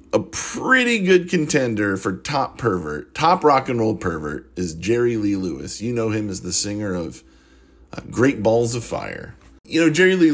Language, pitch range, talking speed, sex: English, 100-150 Hz, 185 wpm, male